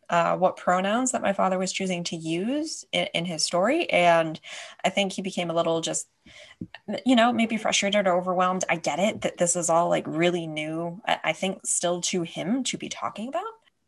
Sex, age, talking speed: female, 20-39, 210 wpm